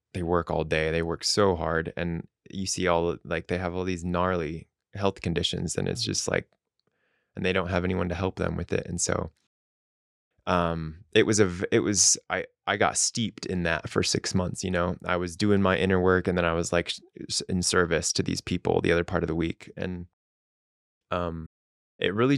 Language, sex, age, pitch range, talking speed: English, male, 20-39, 85-95 Hz, 210 wpm